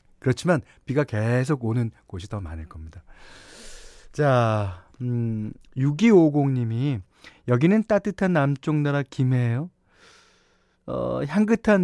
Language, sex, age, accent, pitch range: Korean, male, 40-59, native, 100-150 Hz